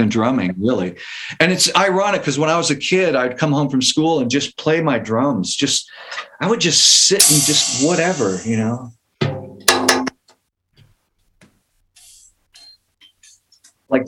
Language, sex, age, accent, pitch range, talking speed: English, male, 50-69, American, 125-165 Hz, 140 wpm